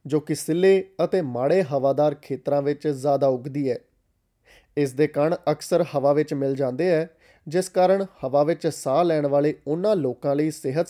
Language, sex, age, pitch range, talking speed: Punjabi, male, 20-39, 140-170 Hz, 170 wpm